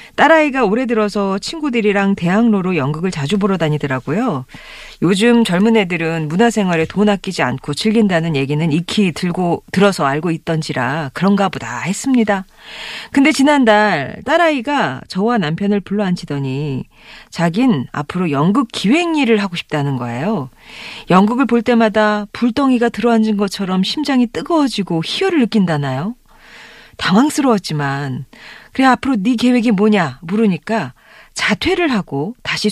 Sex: female